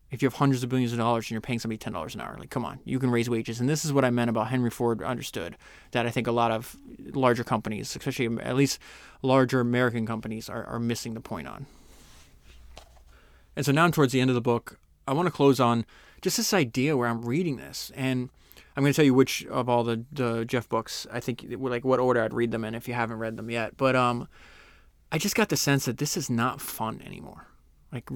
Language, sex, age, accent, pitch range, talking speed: English, male, 20-39, American, 115-135 Hz, 245 wpm